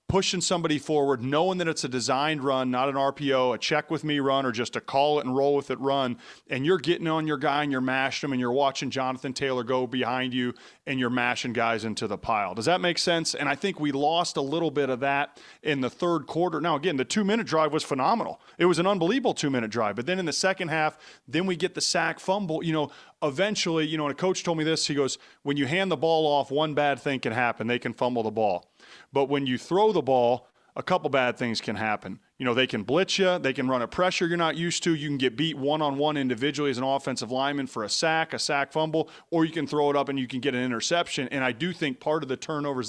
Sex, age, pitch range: male, 30-49, 130-160 Hz